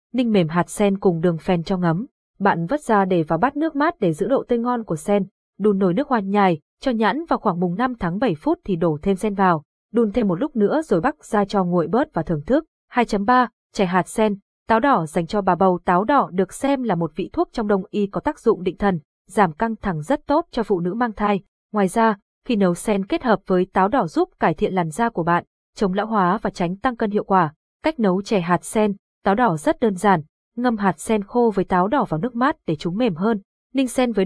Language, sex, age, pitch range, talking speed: Vietnamese, female, 20-39, 185-240 Hz, 255 wpm